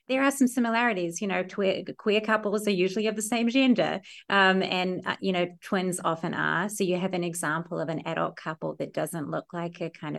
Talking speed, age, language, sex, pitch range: 220 wpm, 30-49, English, female, 170-210 Hz